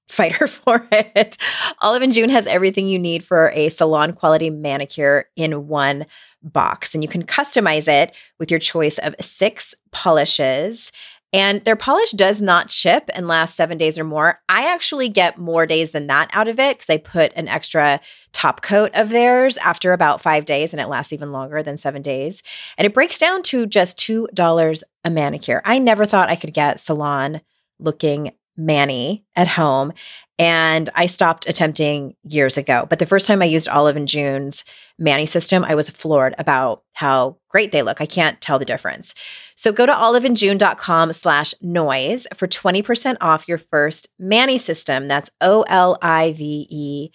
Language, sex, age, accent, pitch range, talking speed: English, female, 30-49, American, 150-210 Hz, 180 wpm